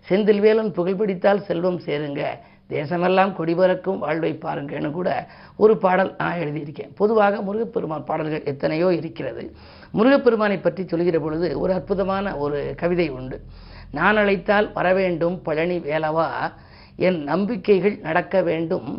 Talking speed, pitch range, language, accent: 115 wpm, 160-195 Hz, Tamil, native